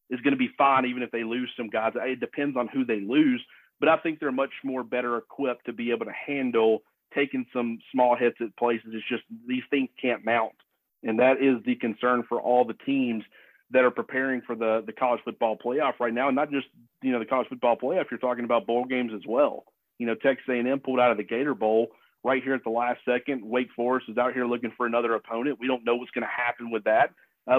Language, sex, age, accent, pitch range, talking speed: English, male, 40-59, American, 120-130 Hz, 245 wpm